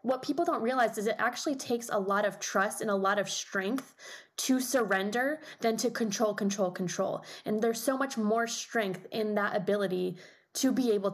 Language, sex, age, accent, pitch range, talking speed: English, female, 20-39, American, 195-230 Hz, 195 wpm